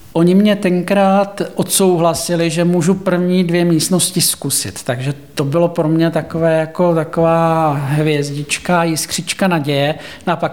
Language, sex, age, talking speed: Czech, male, 50-69, 125 wpm